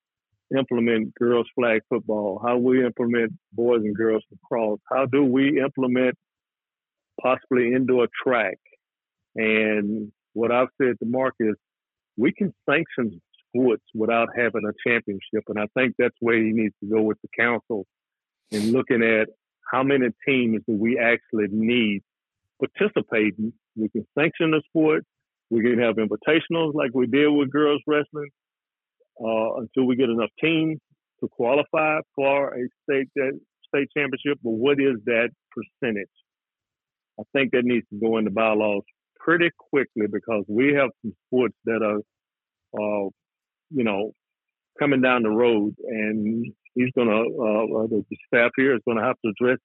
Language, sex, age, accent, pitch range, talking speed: English, male, 50-69, American, 110-135 Hz, 155 wpm